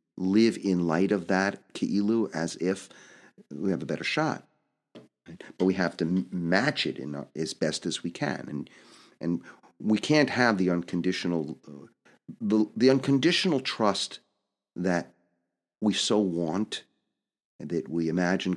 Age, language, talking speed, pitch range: 50-69, English, 150 wpm, 85-100 Hz